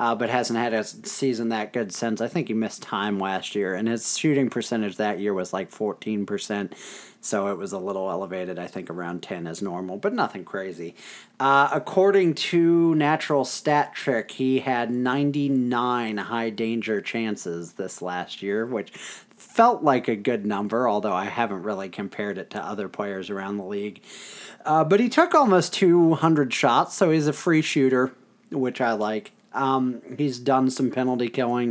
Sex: male